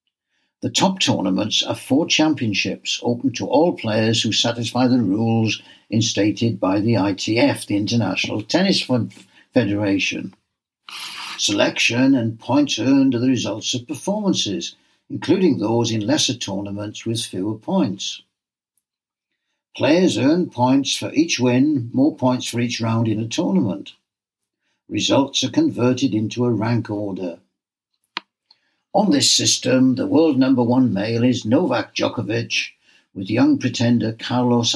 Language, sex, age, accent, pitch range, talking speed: English, male, 60-79, British, 110-145 Hz, 130 wpm